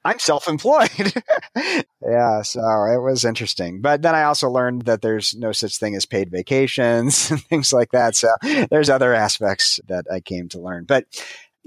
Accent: American